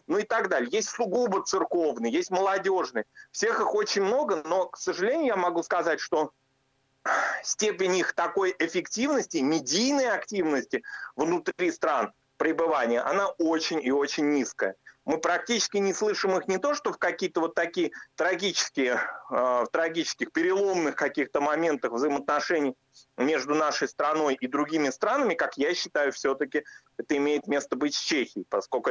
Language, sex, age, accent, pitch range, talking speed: Russian, male, 30-49, native, 145-240 Hz, 145 wpm